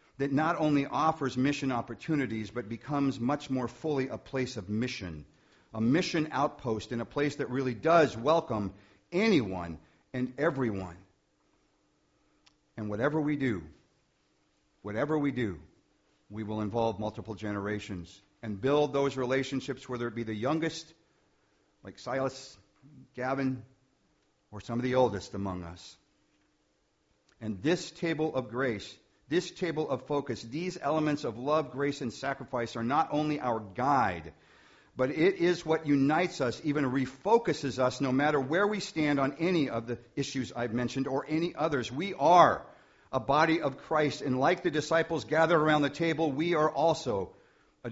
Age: 50-69